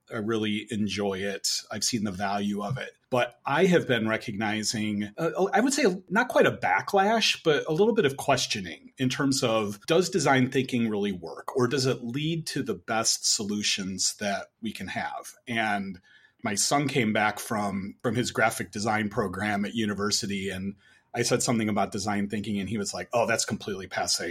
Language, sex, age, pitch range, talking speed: English, male, 30-49, 105-135 Hz, 190 wpm